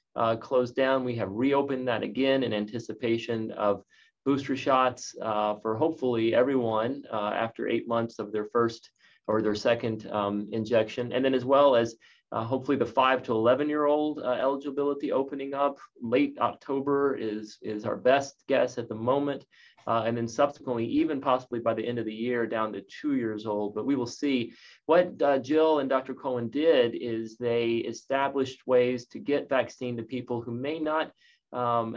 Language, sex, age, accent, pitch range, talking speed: English, male, 30-49, American, 115-135 Hz, 180 wpm